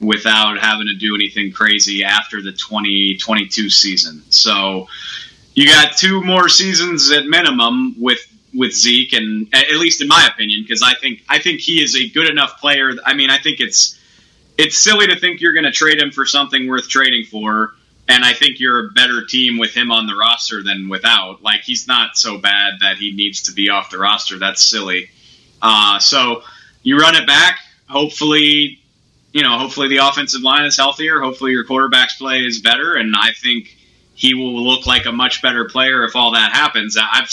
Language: English